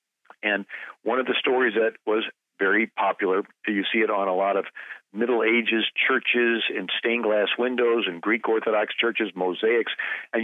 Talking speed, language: 165 wpm, English